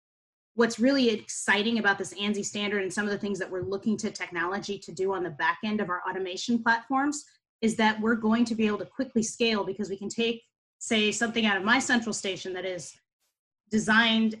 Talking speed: 210 wpm